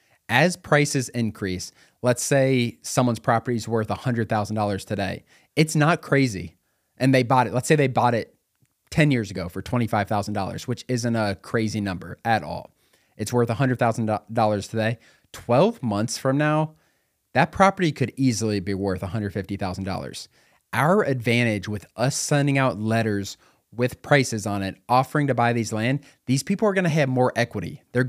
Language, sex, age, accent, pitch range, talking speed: English, male, 30-49, American, 105-130 Hz, 160 wpm